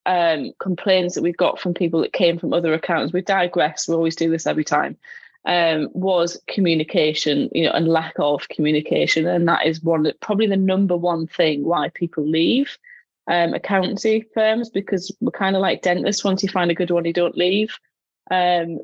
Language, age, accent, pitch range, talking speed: English, 20-39, British, 170-190 Hz, 190 wpm